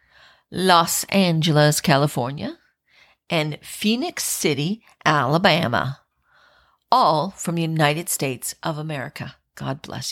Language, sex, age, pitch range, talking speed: English, female, 50-69, 145-195 Hz, 95 wpm